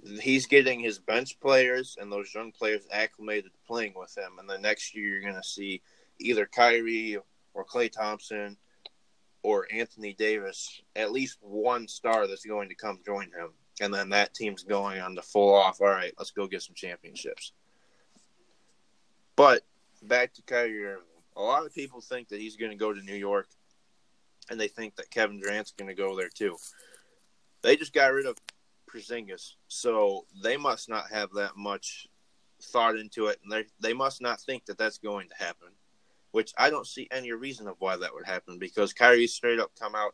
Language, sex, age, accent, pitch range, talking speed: English, male, 20-39, American, 100-120 Hz, 190 wpm